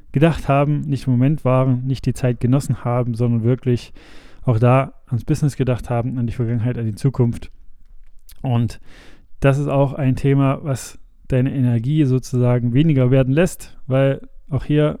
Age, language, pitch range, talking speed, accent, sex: 20-39, German, 125-140 Hz, 165 wpm, German, male